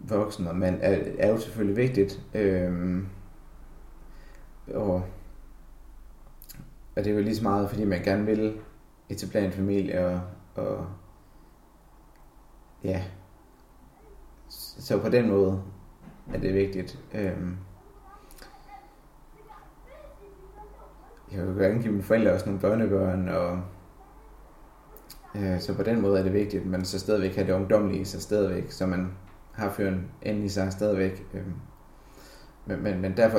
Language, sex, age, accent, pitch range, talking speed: Danish, male, 30-49, native, 95-105 Hz, 130 wpm